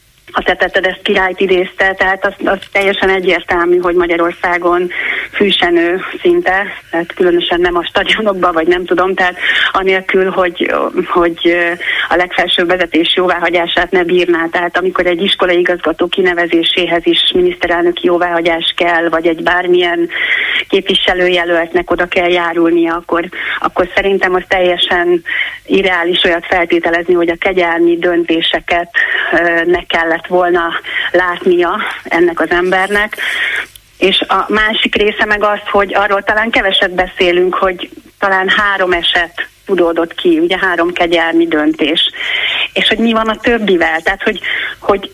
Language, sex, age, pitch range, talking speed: Hungarian, female, 30-49, 170-200 Hz, 130 wpm